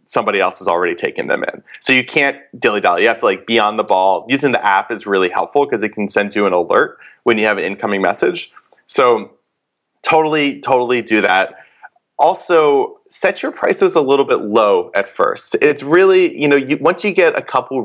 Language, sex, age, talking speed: English, male, 20-39, 210 wpm